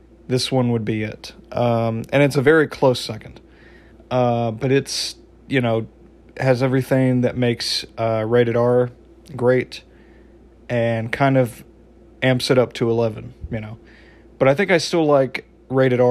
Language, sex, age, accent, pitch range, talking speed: English, male, 40-59, American, 115-130 Hz, 155 wpm